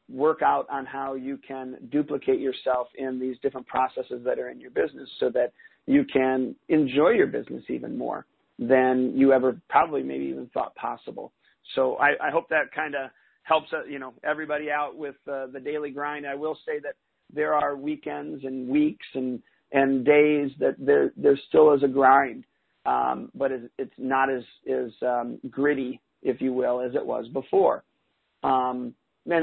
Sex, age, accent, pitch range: male, 40-59, American, 130-150 Hz